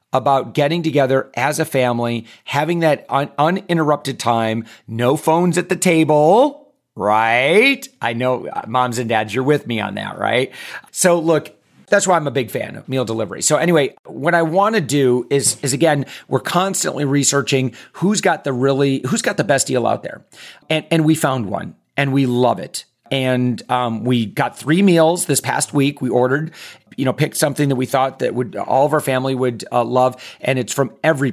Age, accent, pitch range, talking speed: 40-59, American, 125-165 Hz, 195 wpm